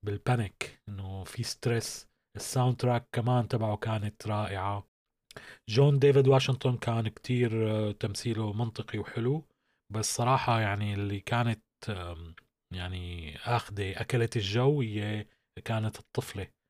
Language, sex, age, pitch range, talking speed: Arabic, male, 30-49, 105-130 Hz, 105 wpm